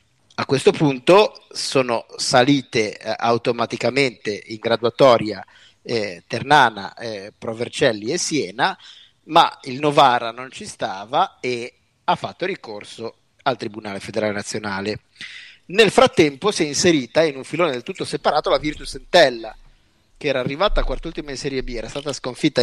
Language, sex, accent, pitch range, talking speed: Italian, male, native, 120-175 Hz, 145 wpm